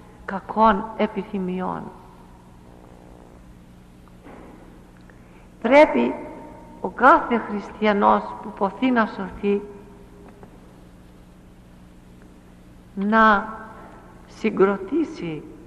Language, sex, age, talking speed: English, female, 60-79, 45 wpm